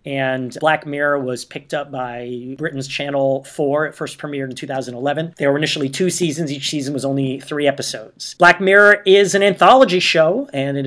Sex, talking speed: male, 190 wpm